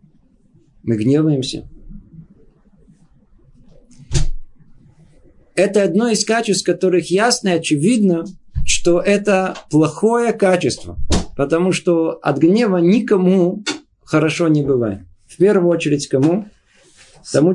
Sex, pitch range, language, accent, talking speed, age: male, 155-205 Hz, Russian, native, 90 wpm, 50-69